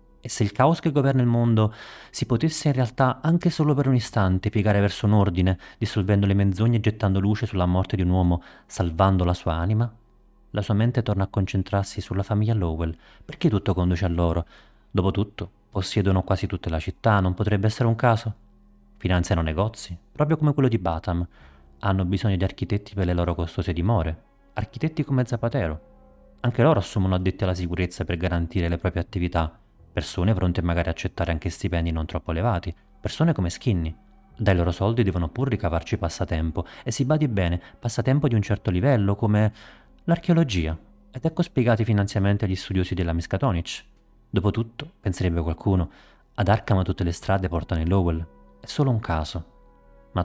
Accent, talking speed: native, 175 wpm